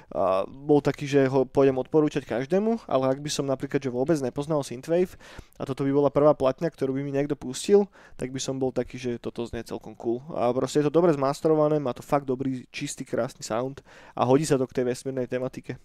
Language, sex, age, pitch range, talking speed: Slovak, male, 20-39, 130-150 Hz, 225 wpm